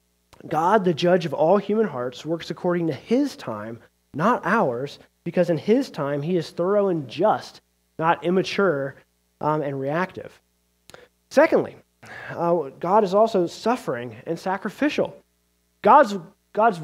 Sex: male